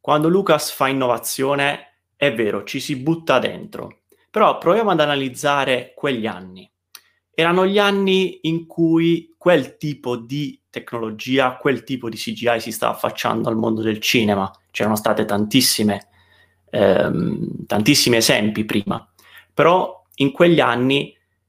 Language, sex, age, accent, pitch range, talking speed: Italian, male, 30-49, native, 110-160 Hz, 130 wpm